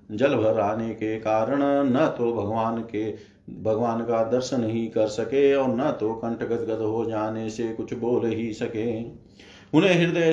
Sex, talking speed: male, 155 wpm